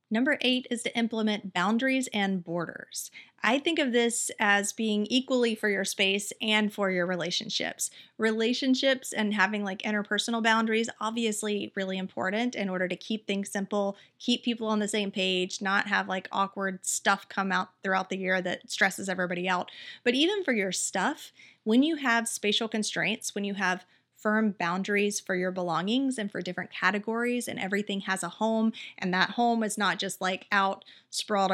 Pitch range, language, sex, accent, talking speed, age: 195-230 Hz, English, female, American, 175 wpm, 30-49